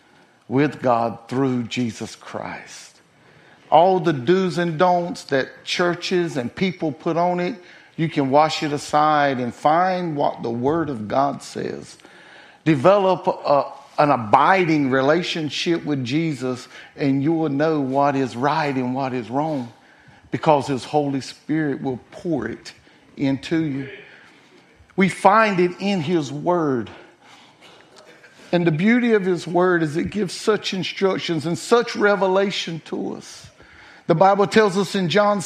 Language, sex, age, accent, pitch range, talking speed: English, male, 50-69, American, 150-200 Hz, 140 wpm